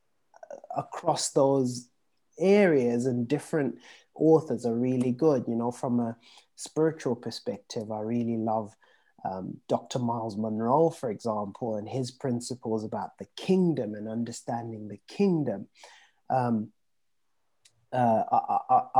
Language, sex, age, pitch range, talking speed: English, male, 30-49, 115-145 Hz, 115 wpm